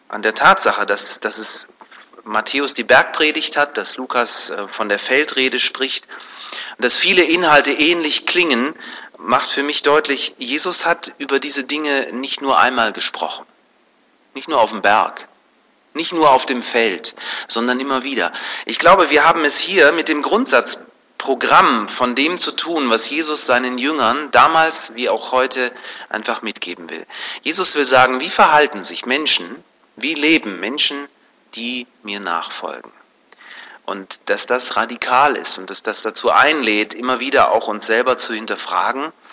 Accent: German